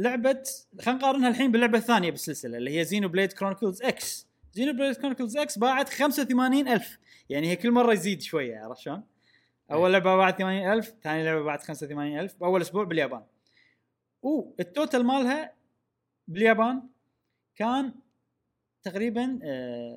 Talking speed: 135 wpm